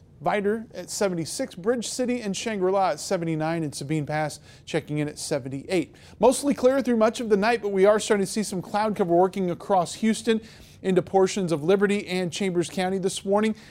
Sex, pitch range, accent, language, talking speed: male, 165-200 Hz, American, English, 195 wpm